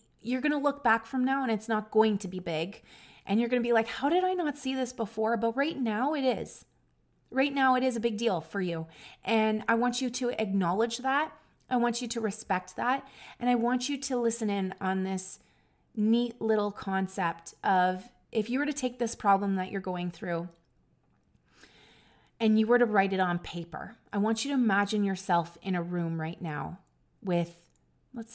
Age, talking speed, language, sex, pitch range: 30-49, 210 wpm, English, female, 175-235 Hz